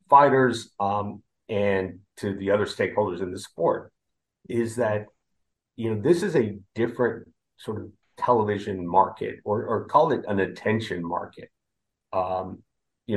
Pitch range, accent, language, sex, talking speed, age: 95-115 Hz, American, English, male, 140 wpm, 30-49